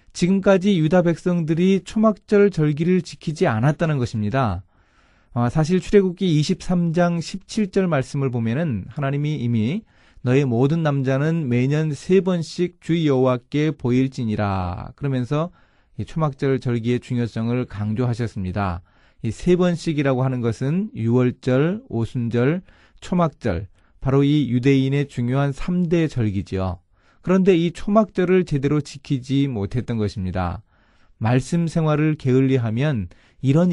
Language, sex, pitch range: Korean, male, 115-165 Hz